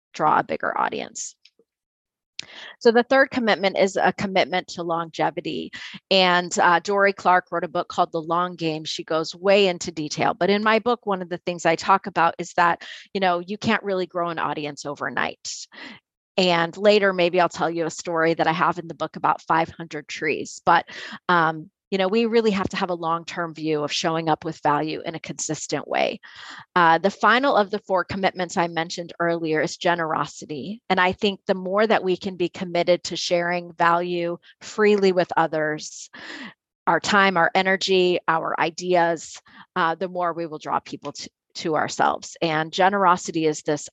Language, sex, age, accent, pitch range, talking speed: English, female, 30-49, American, 160-190 Hz, 185 wpm